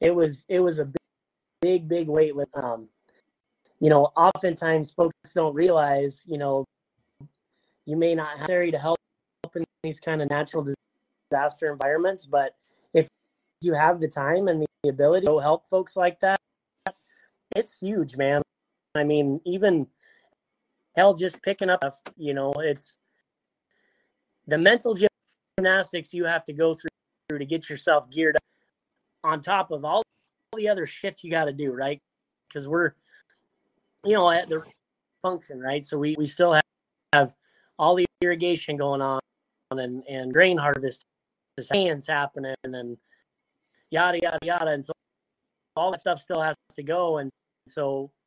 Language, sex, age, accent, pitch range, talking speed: English, male, 30-49, American, 145-175 Hz, 160 wpm